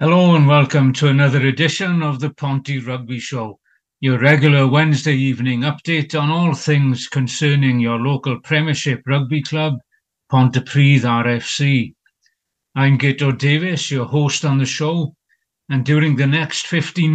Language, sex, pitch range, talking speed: English, male, 135-155 Hz, 140 wpm